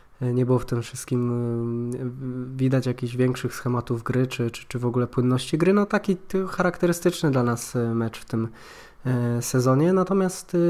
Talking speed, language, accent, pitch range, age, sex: 150 wpm, Polish, native, 125-135 Hz, 20-39, male